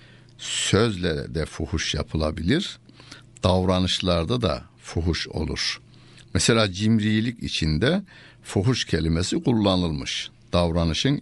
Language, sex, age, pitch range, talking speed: Turkish, male, 60-79, 80-120 Hz, 80 wpm